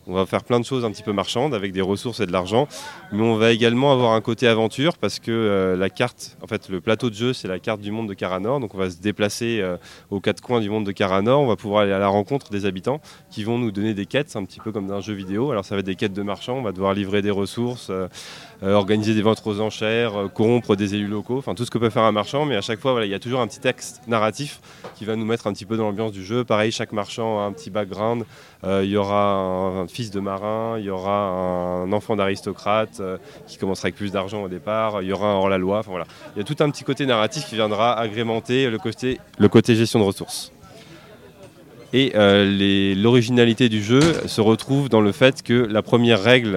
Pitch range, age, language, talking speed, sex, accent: 100-120 Hz, 20-39, French, 265 wpm, male, French